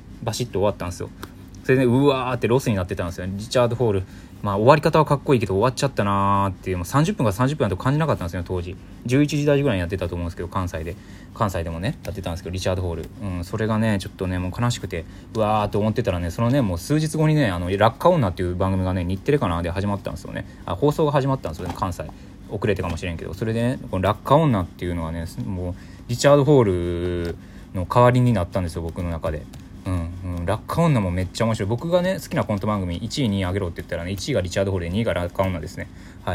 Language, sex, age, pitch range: Japanese, male, 20-39, 90-115 Hz